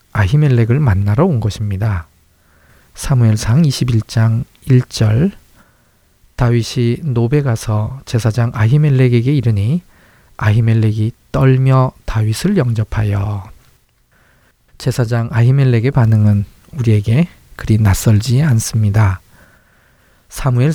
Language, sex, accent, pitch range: Korean, male, native, 105-130 Hz